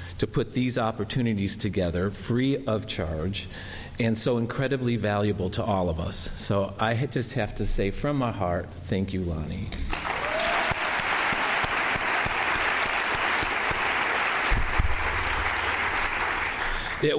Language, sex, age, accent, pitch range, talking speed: English, male, 50-69, American, 95-120 Hz, 100 wpm